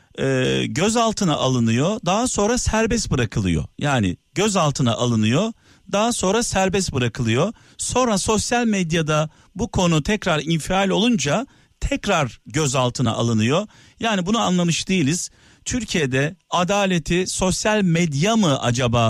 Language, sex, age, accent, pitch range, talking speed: Turkish, male, 50-69, native, 130-190 Hz, 110 wpm